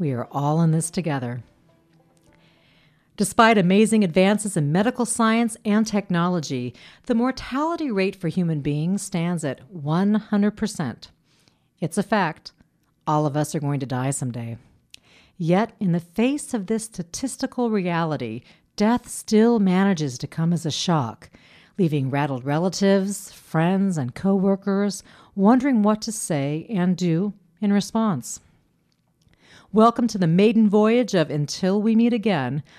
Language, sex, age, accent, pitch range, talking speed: English, female, 50-69, American, 155-210 Hz, 135 wpm